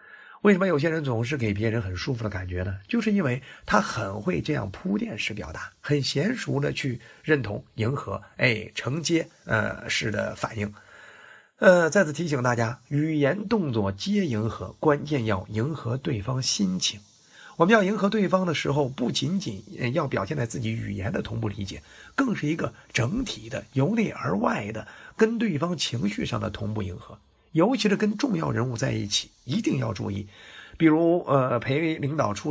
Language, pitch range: Chinese, 110-160 Hz